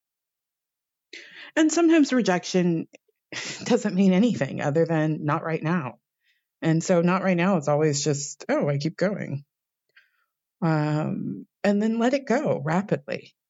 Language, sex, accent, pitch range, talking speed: English, female, American, 150-210 Hz, 135 wpm